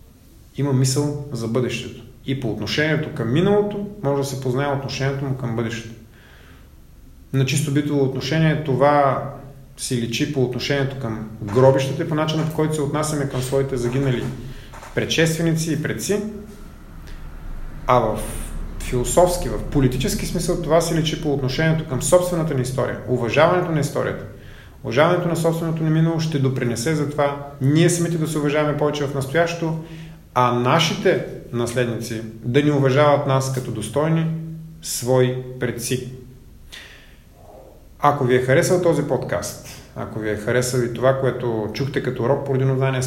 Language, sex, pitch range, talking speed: Bulgarian, male, 125-155 Hz, 145 wpm